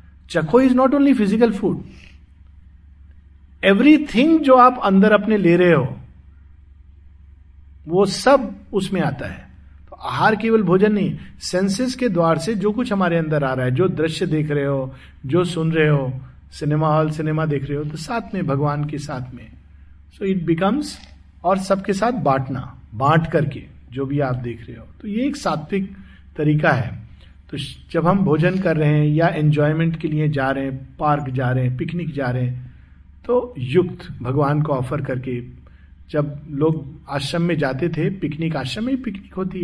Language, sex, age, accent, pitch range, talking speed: Hindi, male, 50-69, native, 130-185 Hz, 180 wpm